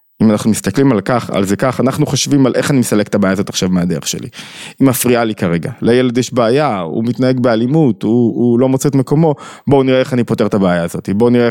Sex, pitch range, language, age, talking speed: male, 110-140 Hz, Hebrew, 20-39, 240 wpm